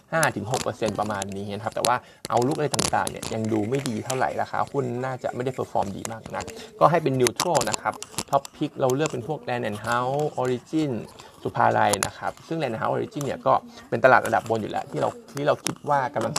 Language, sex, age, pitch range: Thai, male, 20-39, 115-140 Hz